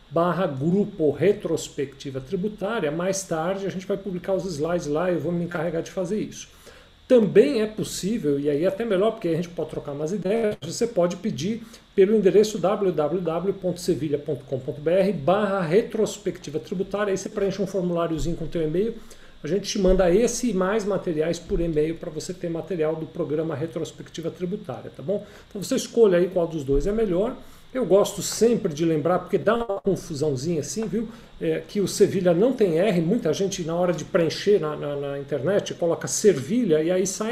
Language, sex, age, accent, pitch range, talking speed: Portuguese, male, 50-69, Brazilian, 160-205 Hz, 185 wpm